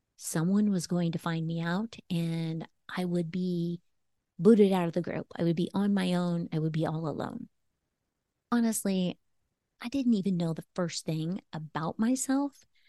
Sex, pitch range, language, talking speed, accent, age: female, 170-205 Hz, English, 170 wpm, American, 30-49